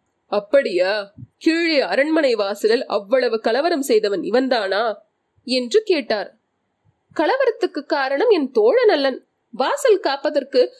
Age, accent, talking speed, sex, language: 30-49, native, 90 wpm, female, Tamil